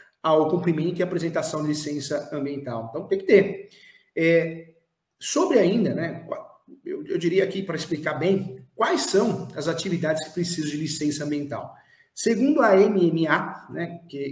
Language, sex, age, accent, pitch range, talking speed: Portuguese, male, 40-59, Brazilian, 155-185 Hz, 150 wpm